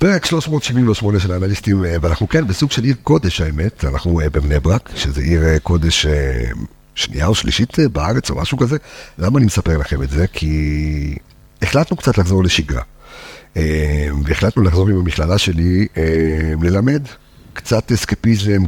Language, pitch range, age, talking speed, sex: Hebrew, 80-105 Hz, 50-69, 140 wpm, male